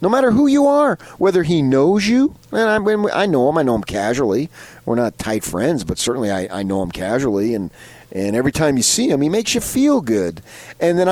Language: English